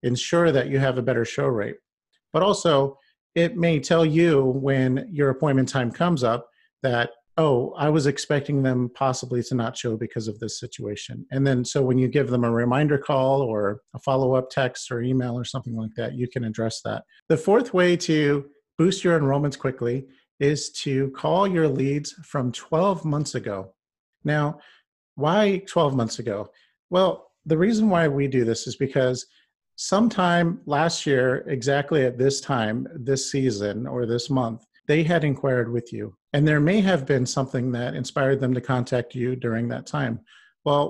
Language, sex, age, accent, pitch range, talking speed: English, male, 40-59, American, 125-155 Hz, 180 wpm